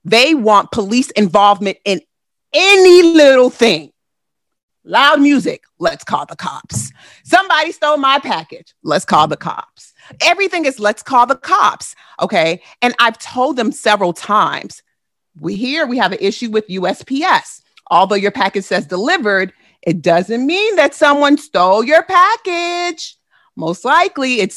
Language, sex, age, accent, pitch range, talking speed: English, female, 30-49, American, 205-305 Hz, 145 wpm